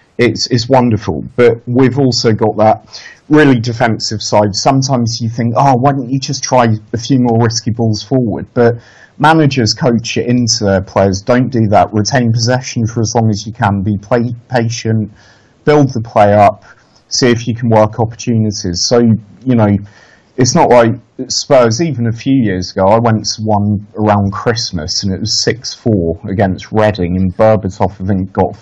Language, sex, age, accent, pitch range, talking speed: English, male, 30-49, British, 105-130 Hz, 180 wpm